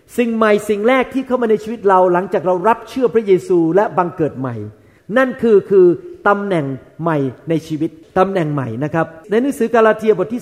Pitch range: 175-230 Hz